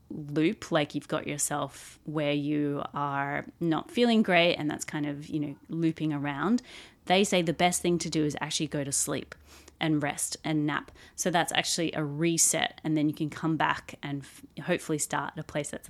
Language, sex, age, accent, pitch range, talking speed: English, female, 30-49, Australian, 150-195 Hz, 200 wpm